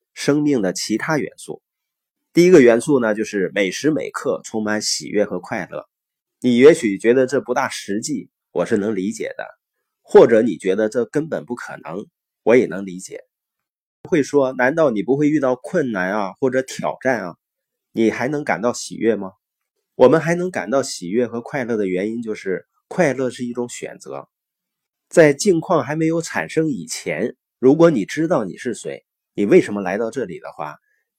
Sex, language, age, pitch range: male, Chinese, 30-49, 105-150 Hz